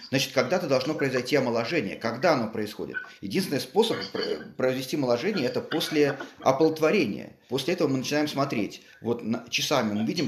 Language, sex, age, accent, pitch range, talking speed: Russian, male, 30-49, native, 120-155 Hz, 145 wpm